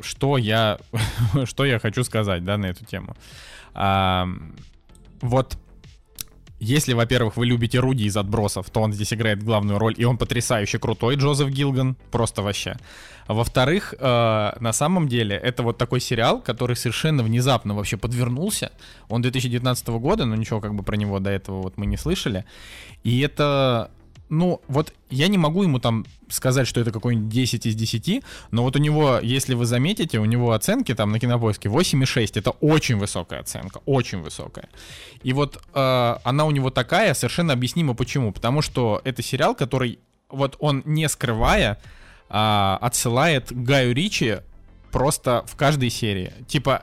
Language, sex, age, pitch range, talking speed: Russian, male, 20-39, 110-135 Hz, 160 wpm